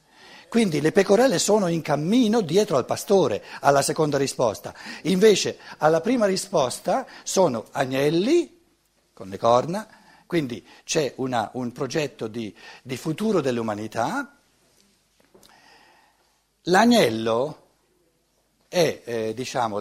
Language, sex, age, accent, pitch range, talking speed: Italian, male, 60-79, native, 140-195 Hz, 105 wpm